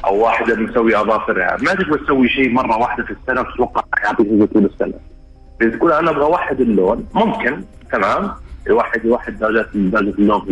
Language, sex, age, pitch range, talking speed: Arabic, male, 30-49, 100-130 Hz, 165 wpm